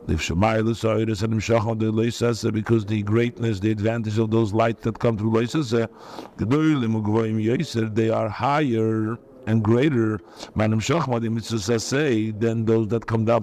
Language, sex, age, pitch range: English, male, 50-69, 110-140 Hz